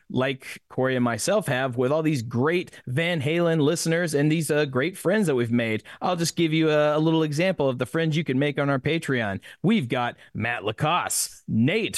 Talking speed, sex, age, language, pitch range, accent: 210 wpm, male, 30-49, English, 125-175 Hz, American